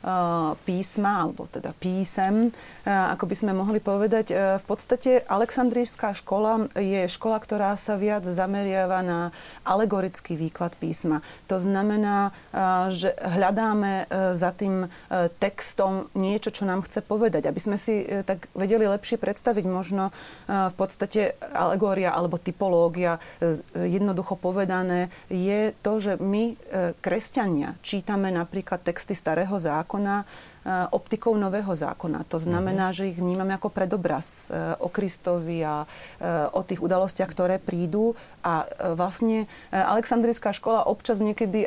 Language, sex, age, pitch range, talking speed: Slovak, female, 30-49, 180-205 Hz, 120 wpm